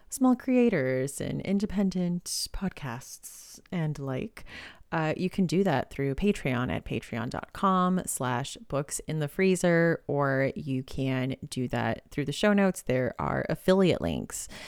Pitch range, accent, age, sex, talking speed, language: 130-180 Hz, American, 30-49, female, 140 wpm, English